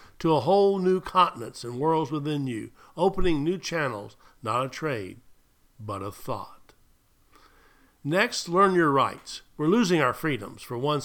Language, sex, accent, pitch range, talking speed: English, male, American, 130-170 Hz, 150 wpm